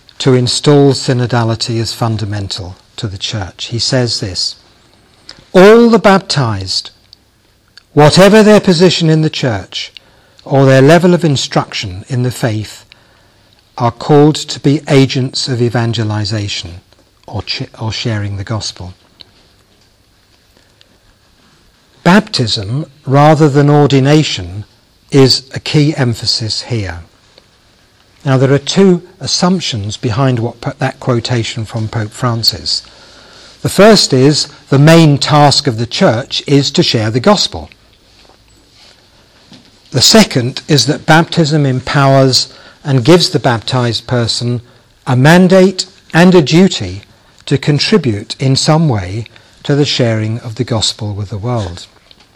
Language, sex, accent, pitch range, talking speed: English, male, British, 110-145 Hz, 120 wpm